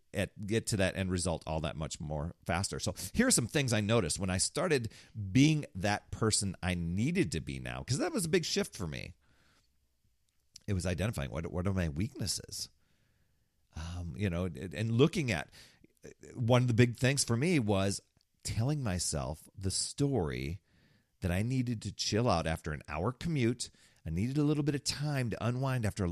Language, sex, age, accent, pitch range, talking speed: English, male, 40-59, American, 80-120 Hz, 195 wpm